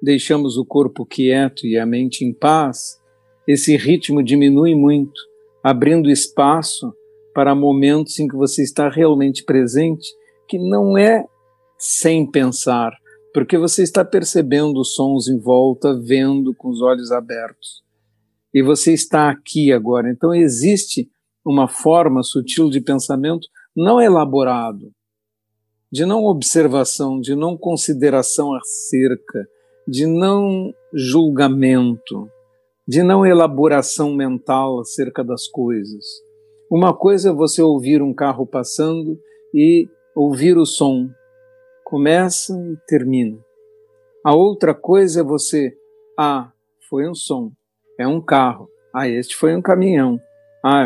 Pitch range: 130-175 Hz